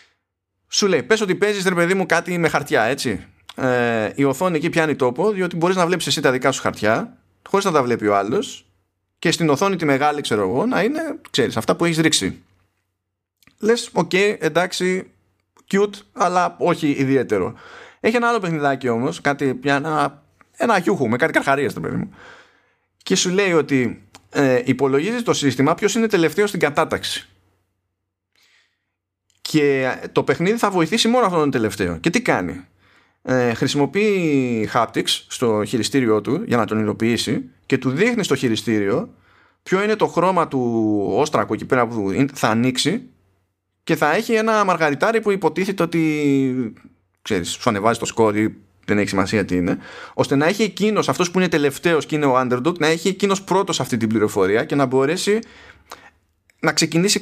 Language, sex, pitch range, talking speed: Greek, male, 110-185 Hz, 170 wpm